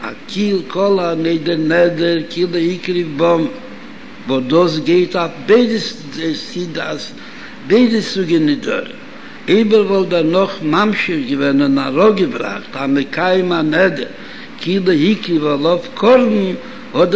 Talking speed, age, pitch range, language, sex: 110 wpm, 70-89, 175-245 Hz, Hebrew, male